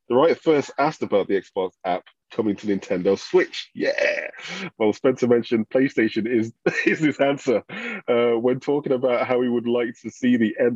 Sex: male